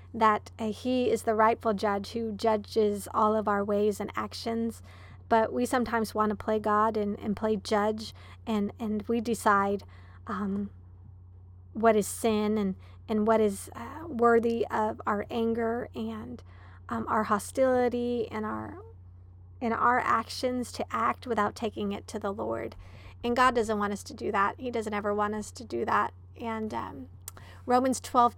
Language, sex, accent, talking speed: English, female, American, 170 wpm